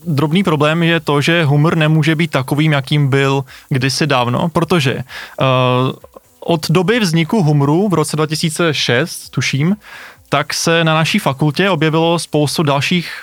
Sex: male